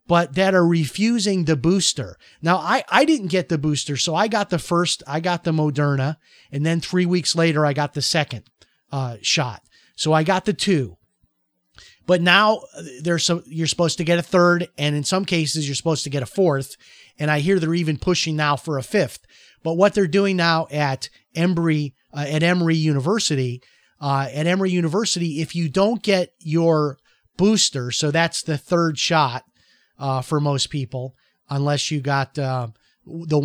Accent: American